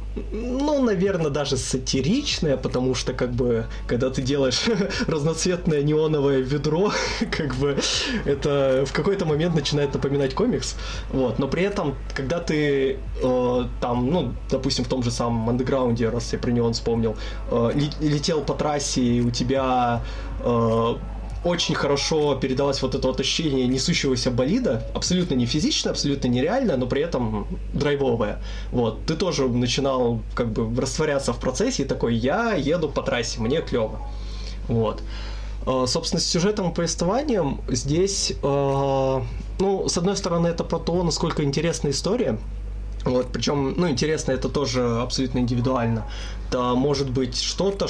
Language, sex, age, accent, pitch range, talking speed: Russian, male, 20-39, native, 120-150 Hz, 145 wpm